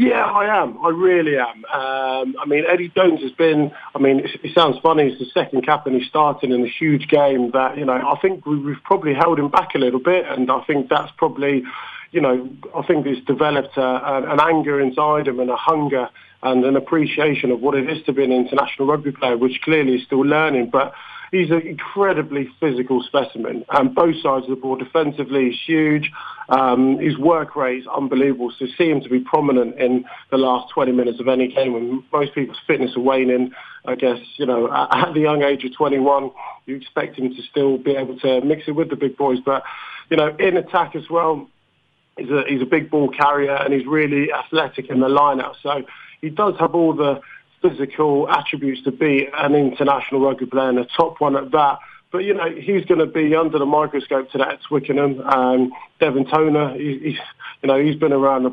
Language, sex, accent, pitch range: English, male, British, 130-155 Hz